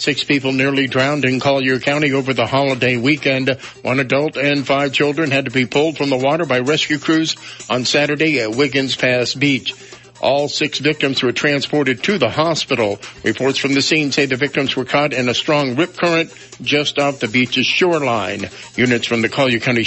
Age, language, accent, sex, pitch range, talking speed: 60-79, English, American, male, 125-150 Hz, 195 wpm